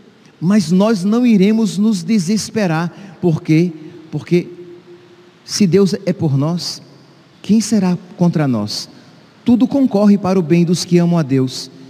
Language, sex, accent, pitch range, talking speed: Portuguese, male, Brazilian, 160-220 Hz, 130 wpm